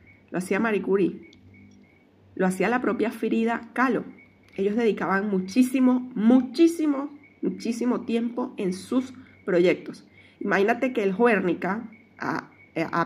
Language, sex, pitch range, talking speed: Spanish, female, 195-255 Hz, 115 wpm